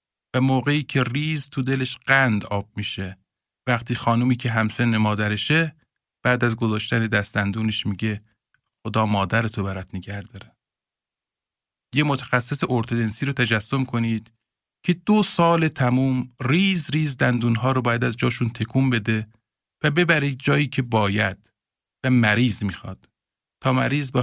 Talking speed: 130 wpm